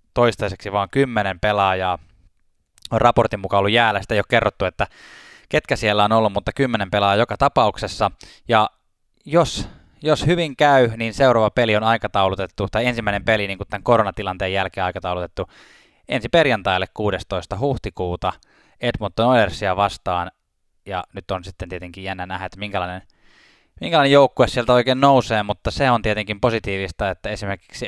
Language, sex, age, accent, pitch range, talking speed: Finnish, male, 20-39, native, 95-120 Hz, 150 wpm